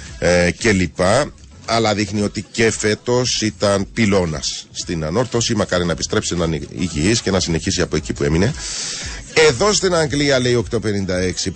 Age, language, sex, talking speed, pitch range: 40-59, Greek, male, 150 wpm, 85-120 Hz